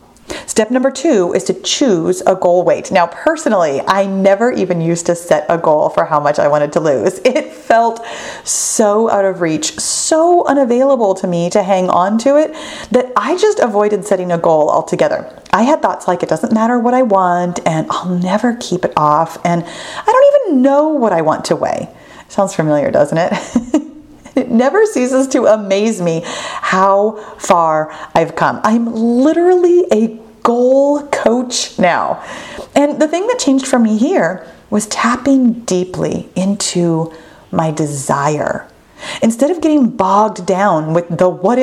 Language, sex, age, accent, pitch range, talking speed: English, female, 30-49, American, 175-270 Hz, 170 wpm